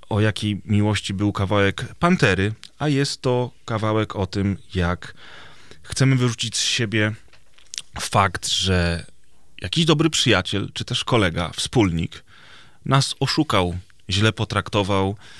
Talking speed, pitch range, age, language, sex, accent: 115 wpm, 95-115 Hz, 30-49, Polish, male, native